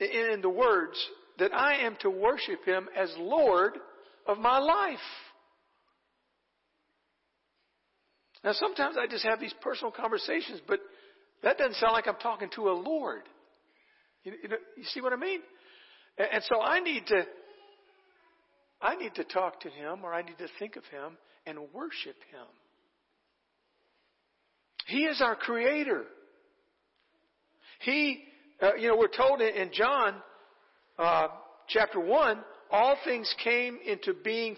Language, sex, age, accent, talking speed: English, male, 60-79, American, 140 wpm